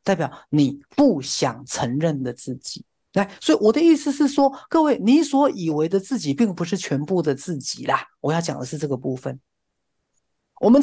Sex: male